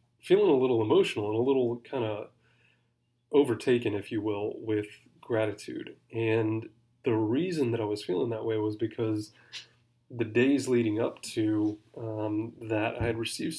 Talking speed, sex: 160 wpm, male